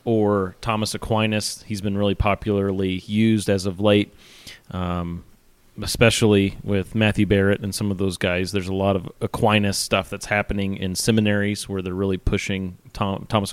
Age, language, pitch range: 30-49, English, 100-120 Hz